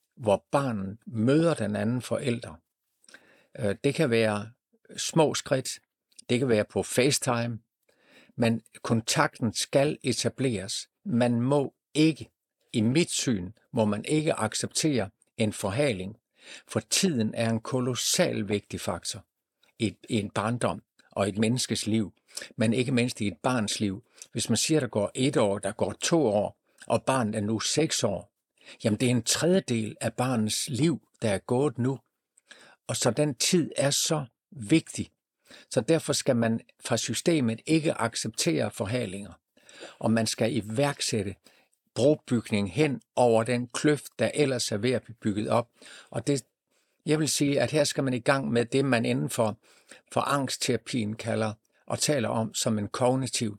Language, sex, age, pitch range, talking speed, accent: Danish, male, 60-79, 110-135 Hz, 155 wpm, native